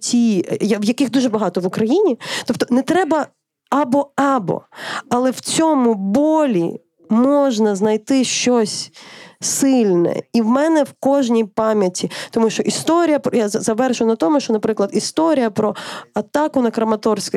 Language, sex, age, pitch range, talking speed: Ukrainian, female, 20-39, 215-270 Hz, 130 wpm